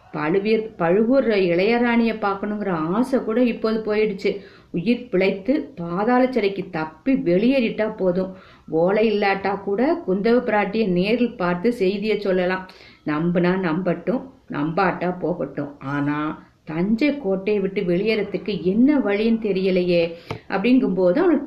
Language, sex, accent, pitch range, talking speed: Tamil, female, native, 175-235 Hz, 100 wpm